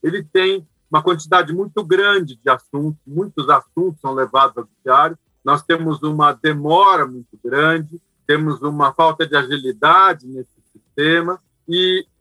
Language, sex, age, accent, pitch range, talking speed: Portuguese, male, 50-69, Brazilian, 145-195 Hz, 140 wpm